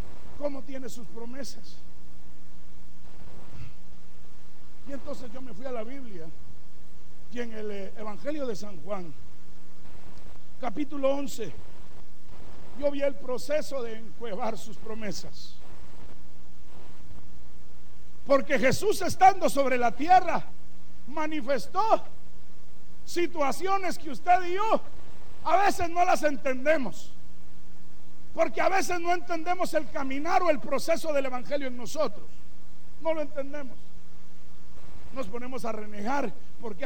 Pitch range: 195-280 Hz